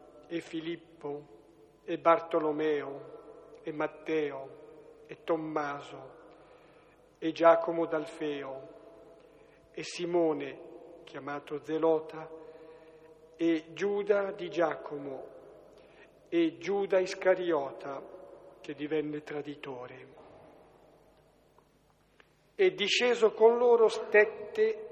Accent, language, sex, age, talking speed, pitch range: native, Italian, male, 50-69, 70 wpm, 155-190 Hz